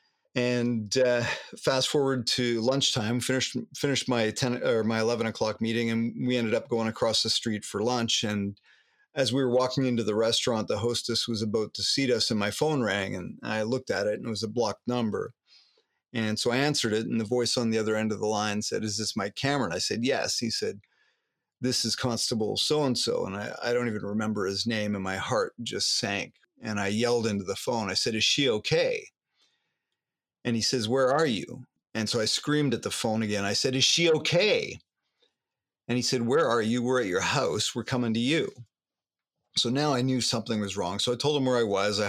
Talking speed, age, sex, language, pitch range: 220 wpm, 40-59, male, English, 110-130 Hz